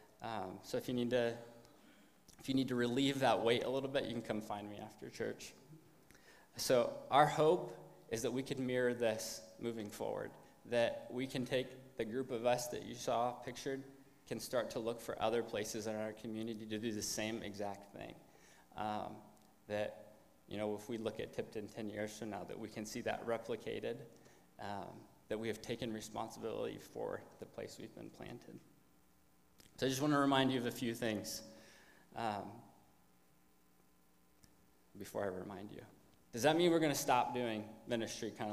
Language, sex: English, male